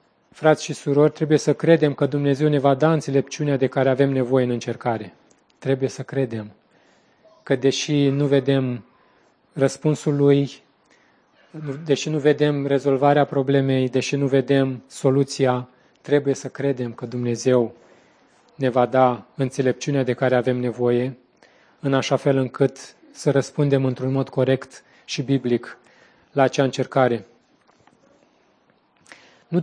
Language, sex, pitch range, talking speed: Romanian, male, 130-150 Hz, 130 wpm